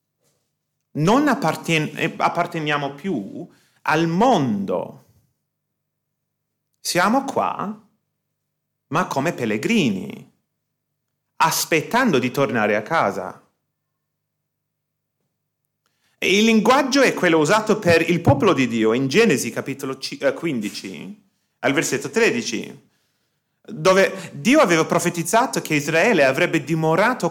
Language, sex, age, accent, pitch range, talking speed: Italian, male, 30-49, native, 145-215 Hz, 90 wpm